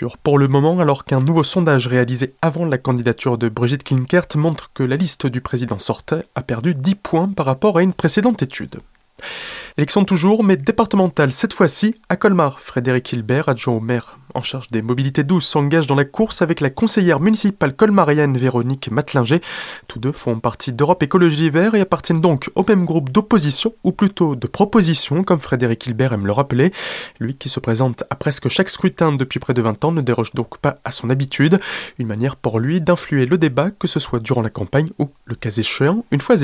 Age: 20-39